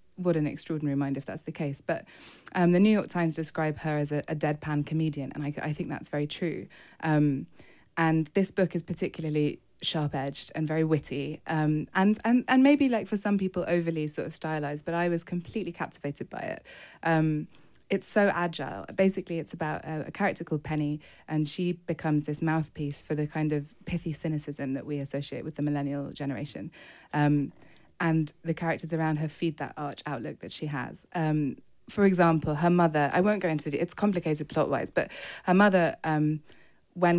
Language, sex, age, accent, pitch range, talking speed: English, female, 20-39, British, 150-180 Hz, 195 wpm